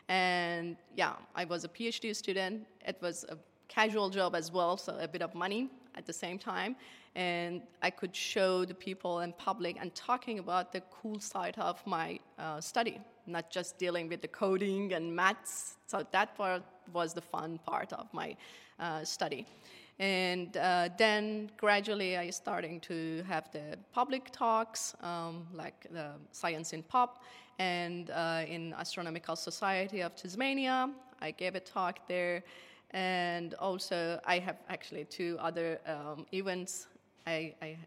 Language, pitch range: English, 170-205 Hz